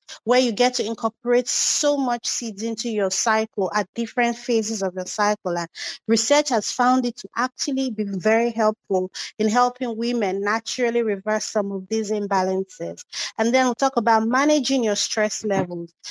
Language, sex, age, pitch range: English, female, 30-49, 210-260 Hz